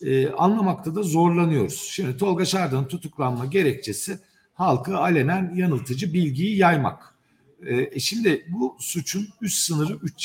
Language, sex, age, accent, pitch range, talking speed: Turkish, male, 50-69, native, 135-190 Hz, 125 wpm